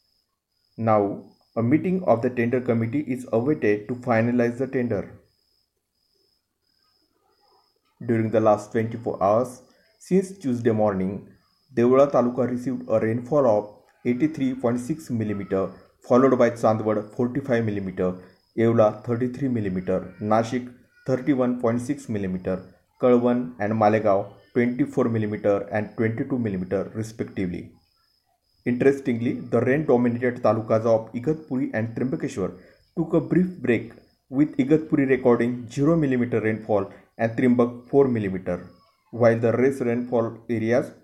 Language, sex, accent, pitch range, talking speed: Marathi, male, native, 105-130 Hz, 115 wpm